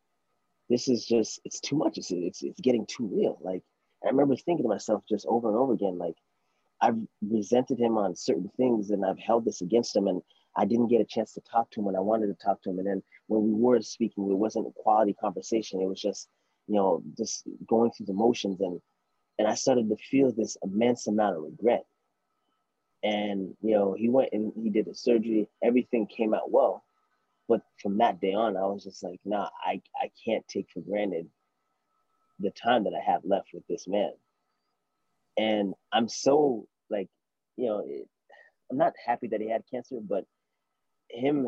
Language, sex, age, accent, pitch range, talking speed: English, male, 30-49, American, 100-120 Hz, 200 wpm